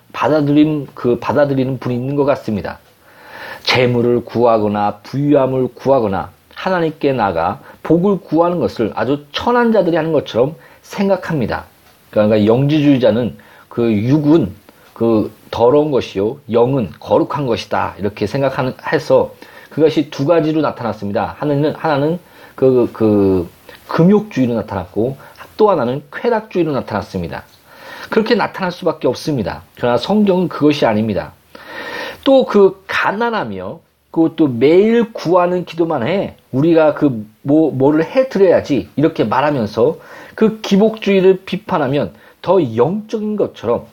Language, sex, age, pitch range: Korean, male, 40-59, 125-200 Hz